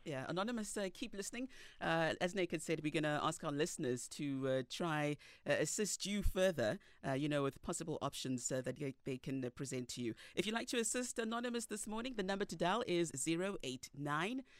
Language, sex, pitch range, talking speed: English, female, 140-215 Hz, 220 wpm